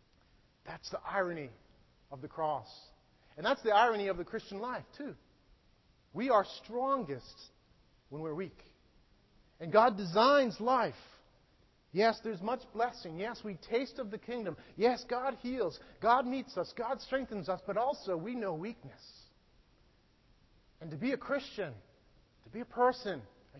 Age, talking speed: 40-59, 150 wpm